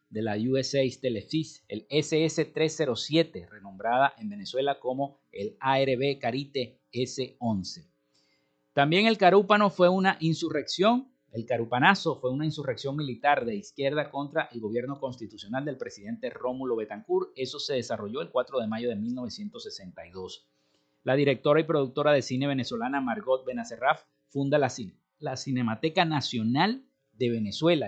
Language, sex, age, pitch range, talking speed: Spanish, male, 50-69, 120-180 Hz, 130 wpm